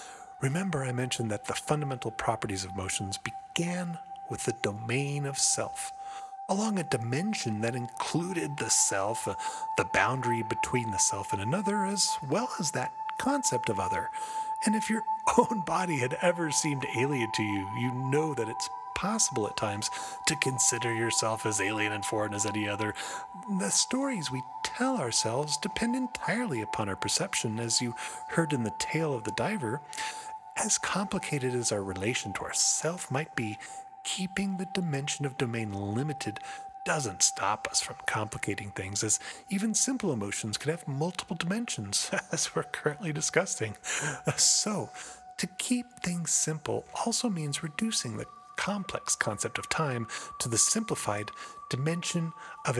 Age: 30-49